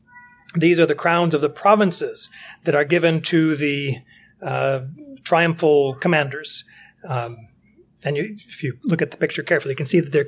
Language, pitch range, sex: English, 135-180 Hz, male